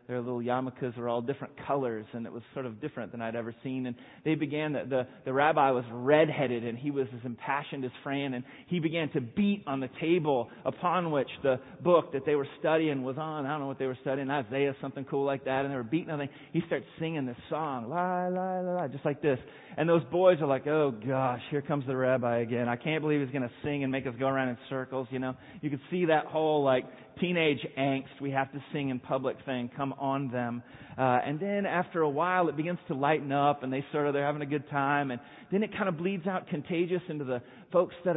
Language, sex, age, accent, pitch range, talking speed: English, male, 30-49, American, 130-165 Hz, 250 wpm